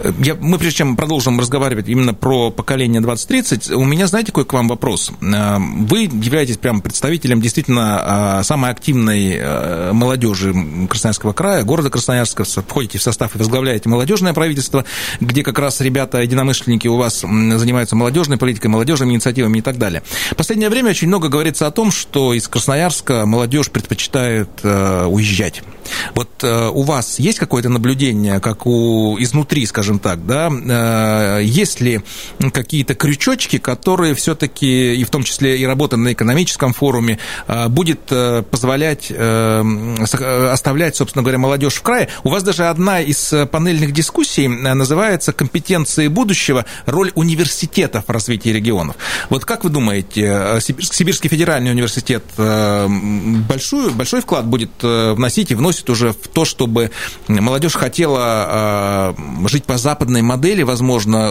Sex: male